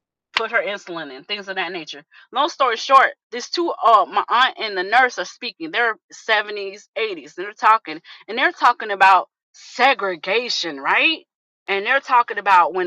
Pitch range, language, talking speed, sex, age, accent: 220-320 Hz, English, 175 wpm, female, 30-49, American